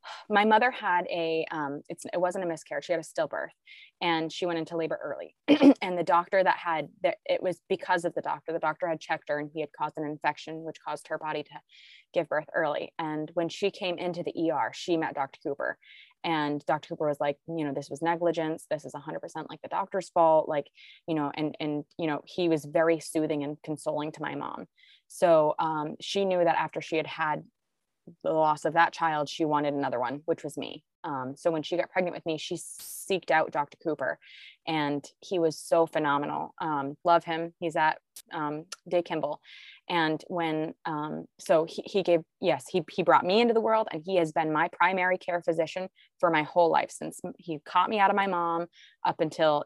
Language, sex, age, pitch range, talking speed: English, female, 20-39, 155-180 Hz, 215 wpm